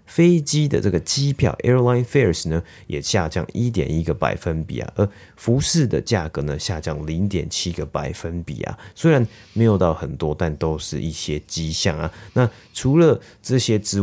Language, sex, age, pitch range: Chinese, male, 30-49, 80-100 Hz